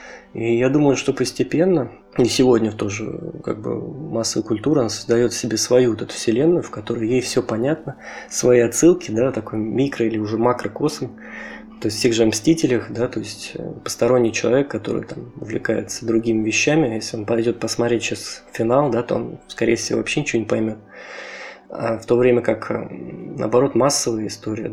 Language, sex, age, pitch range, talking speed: Russian, male, 20-39, 110-130 Hz, 170 wpm